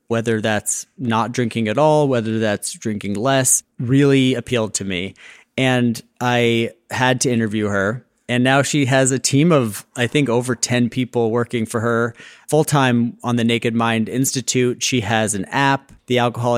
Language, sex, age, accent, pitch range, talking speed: English, male, 30-49, American, 115-135 Hz, 170 wpm